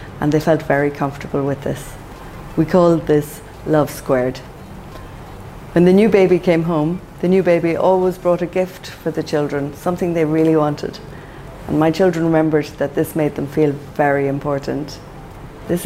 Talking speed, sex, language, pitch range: 165 wpm, female, English, 140-165 Hz